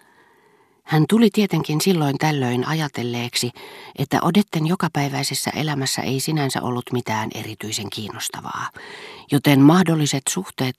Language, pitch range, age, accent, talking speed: Finnish, 120-155 Hz, 40-59, native, 105 wpm